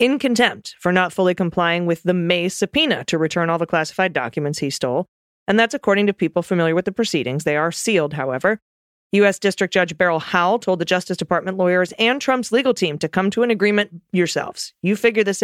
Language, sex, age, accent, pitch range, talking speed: English, female, 30-49, American, 160-205 Hz, 210 wpm